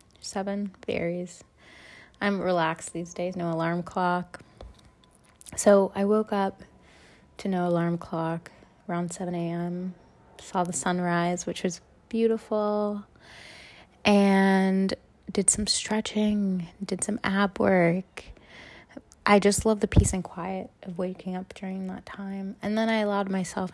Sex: female